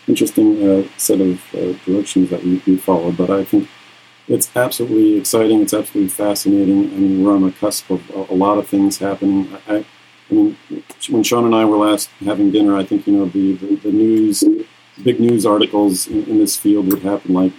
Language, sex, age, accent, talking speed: English, male, 40-59, American, 210 wpm